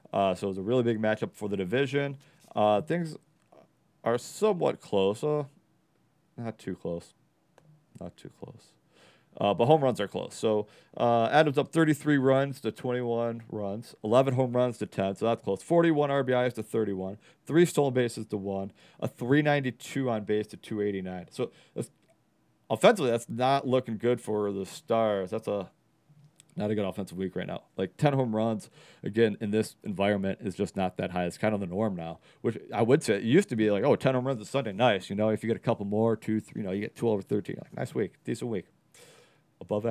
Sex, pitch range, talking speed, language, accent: male, 105-140 Hz, 210 wpm, English, American